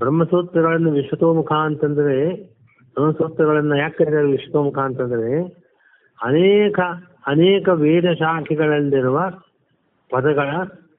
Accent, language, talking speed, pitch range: native, Kannada, 65 wpm, 140-170 Hz